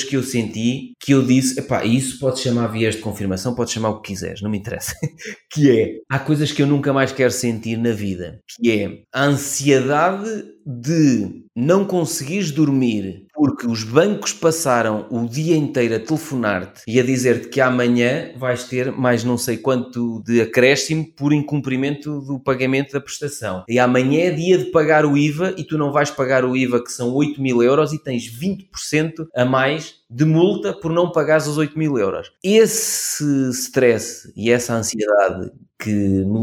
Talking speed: 180 wpm